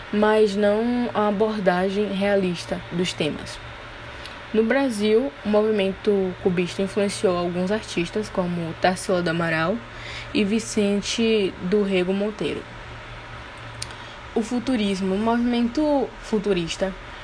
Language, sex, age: Portuguese, female, 10-29